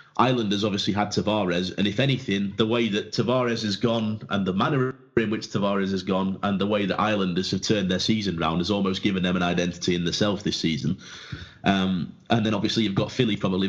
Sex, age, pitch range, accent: male, 30-49, 95-135 Hz, British